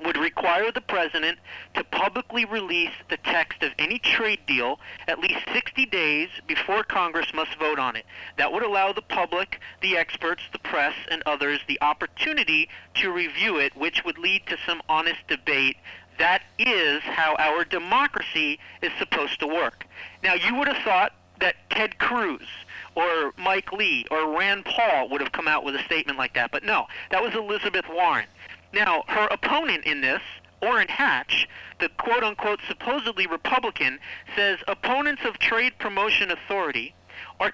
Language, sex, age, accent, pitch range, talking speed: English, male, 40-59, American, 165-245 Hz, 165 wpm